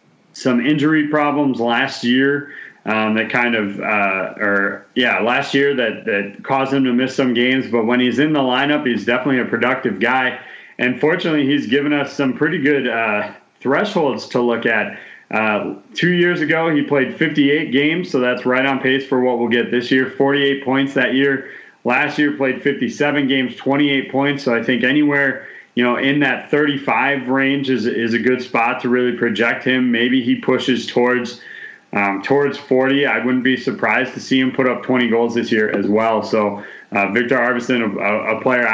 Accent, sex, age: American, male, 30-49